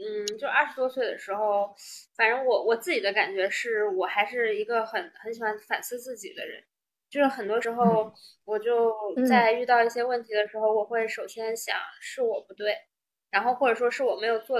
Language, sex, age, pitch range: Chinese, female, 20-39, 210-300 Hz